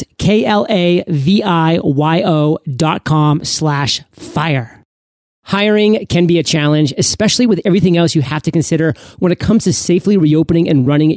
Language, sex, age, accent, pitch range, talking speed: English, male, 40-59, American, 150-190 Hz, 140 wpm